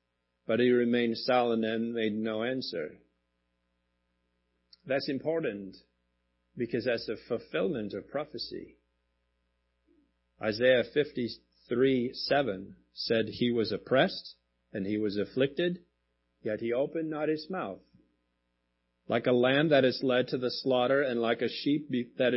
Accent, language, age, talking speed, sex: American, English, 40-59, 125 wpm, male